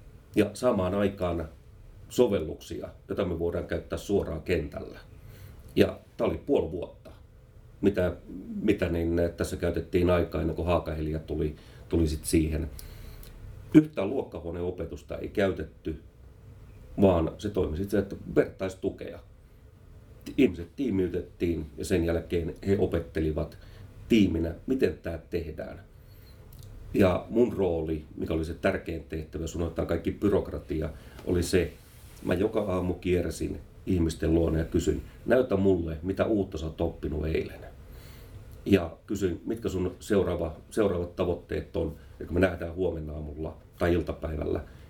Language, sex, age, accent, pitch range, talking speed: Finnish, male, 40-59, native, 80-100 Hz, 125 wpm